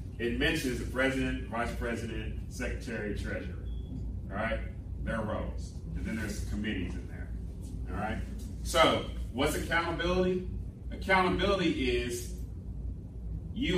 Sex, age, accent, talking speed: male, 30-49, American, 115 wpm